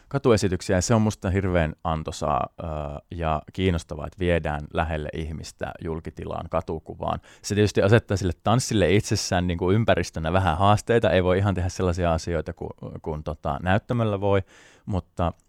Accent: native